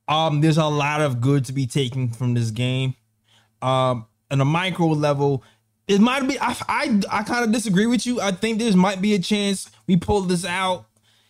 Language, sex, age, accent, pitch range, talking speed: English, male, 20-39, American, 120-155 Hz, 205 wpm